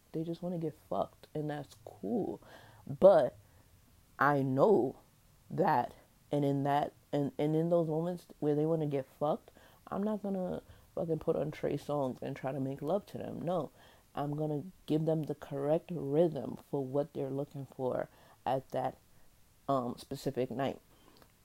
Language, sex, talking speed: English, female, 160 wpm